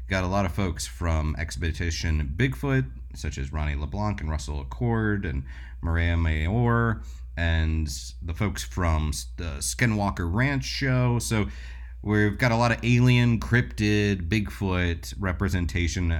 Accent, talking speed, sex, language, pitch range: American, 135 wpm, male, English, 75-120 Hz